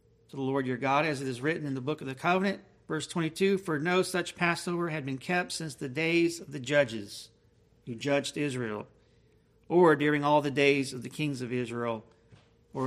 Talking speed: 205 wpm